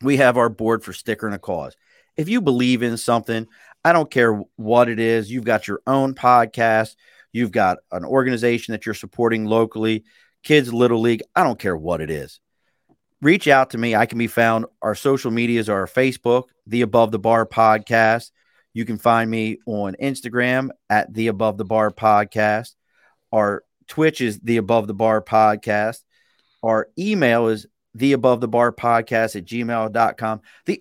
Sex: male